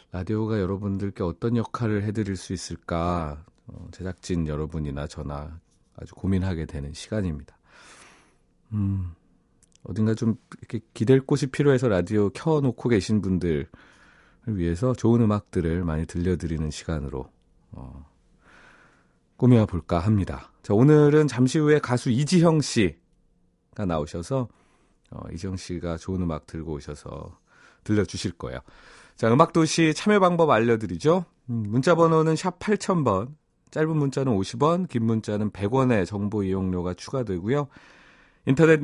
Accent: native